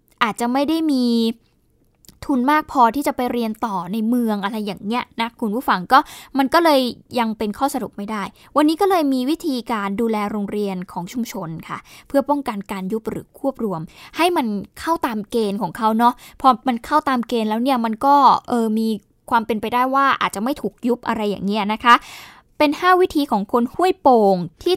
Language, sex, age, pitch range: Thai, female, 10-29, 215-285 Hz